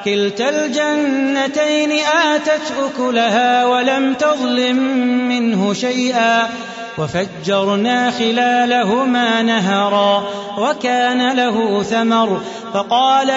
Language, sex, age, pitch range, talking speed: Arabic, male, 30-49, 230-270 Hz, 65 wpm